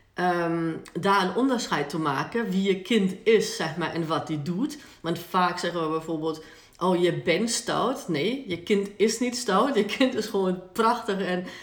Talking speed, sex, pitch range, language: 190 wpm, female, 165-205 Hz, Dutch